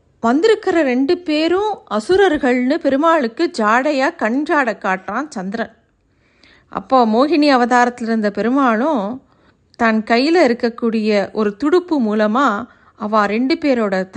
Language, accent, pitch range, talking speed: Tamil, native, 215-275 Hz, 100 wpm